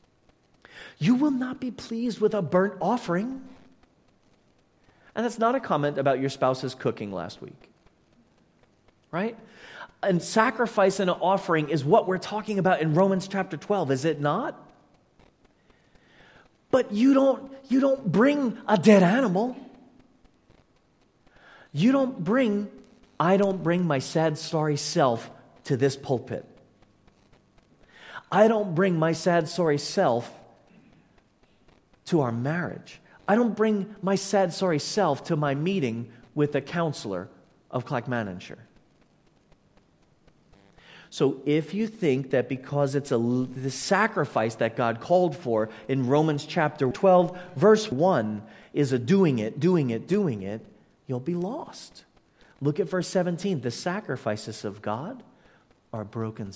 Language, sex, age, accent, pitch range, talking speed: English, male, 40-59, American, 130-205 Hz, 135 wpm